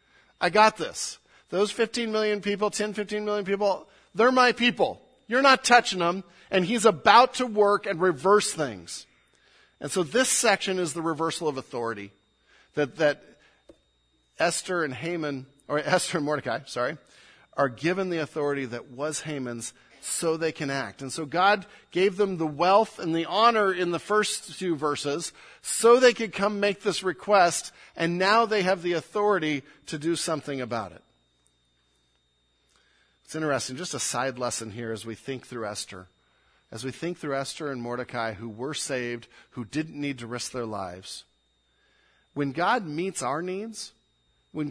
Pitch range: 125-205 Hz